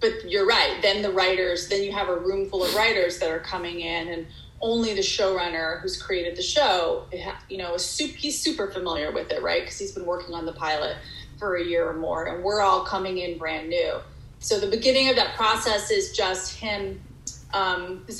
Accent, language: American, English